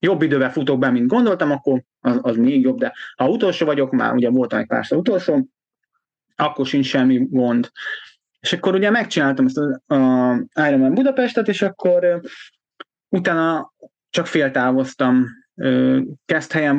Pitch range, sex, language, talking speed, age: 130-210 Hz, male, Hungarian, 145 wpm, 30-49